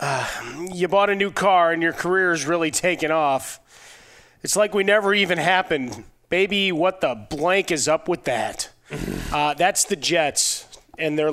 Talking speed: 175 wpm